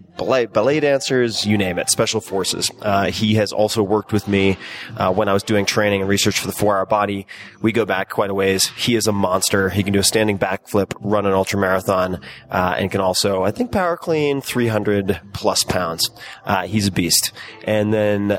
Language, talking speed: English, 200 wpm